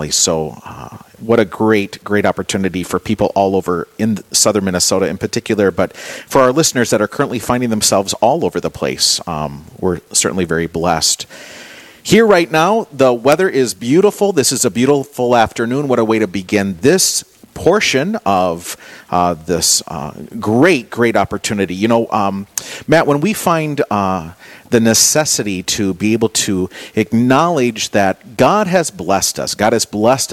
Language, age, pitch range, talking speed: English, 40-59, 95-125 Hz, 165 wpm